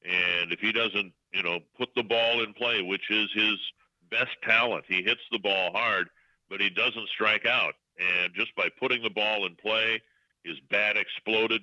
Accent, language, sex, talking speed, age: American, English, male, 190 wpm, 50-69